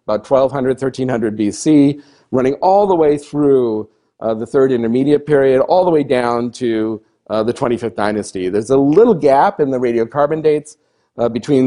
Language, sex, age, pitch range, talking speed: English, male, 40-59, 110-145 Hz, 160 wpm